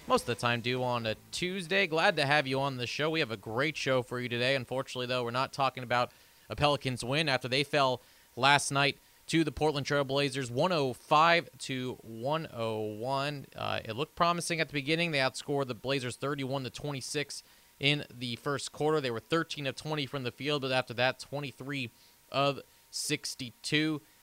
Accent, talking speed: American, 190 wpm